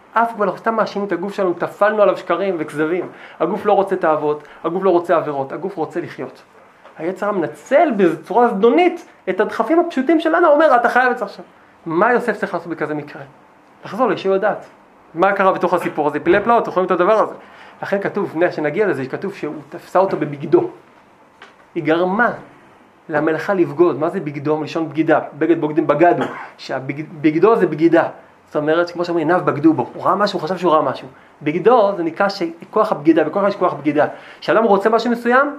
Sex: male